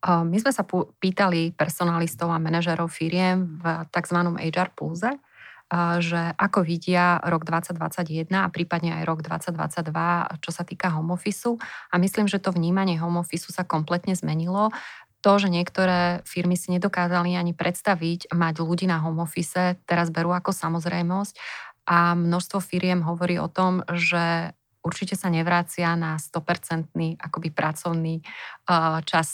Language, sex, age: Slovak, female, 30-49